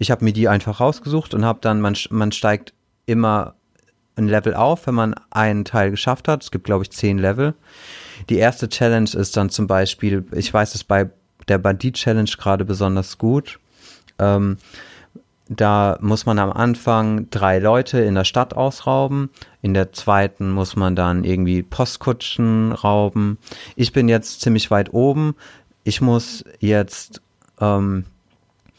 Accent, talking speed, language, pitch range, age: German, 155 wpm, German, 100-130 Hz, 30-49